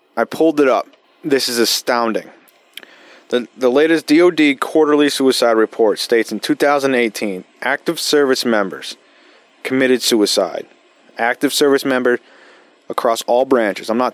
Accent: American